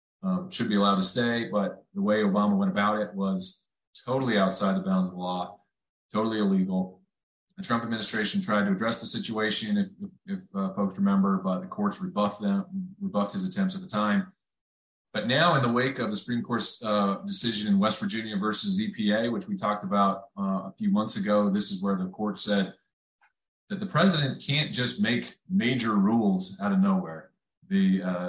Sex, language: male, English